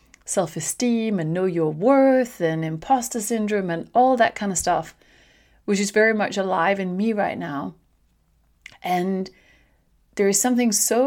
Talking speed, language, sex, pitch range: 150 wpm, English, female, 180-210 Hz